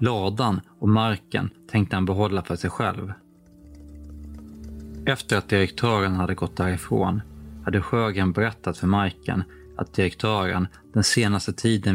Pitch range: 90-105 Hz